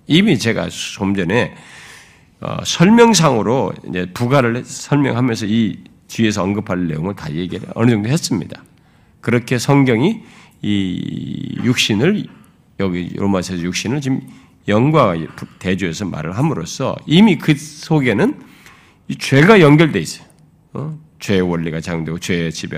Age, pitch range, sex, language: 40-59, 100-160 Hz, male, Korean